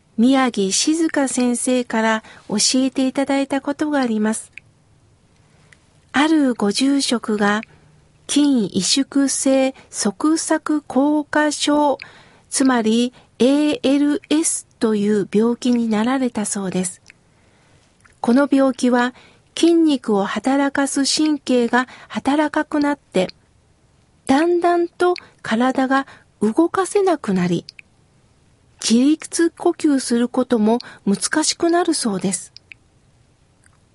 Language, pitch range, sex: Japanese, 220-295 Hz, female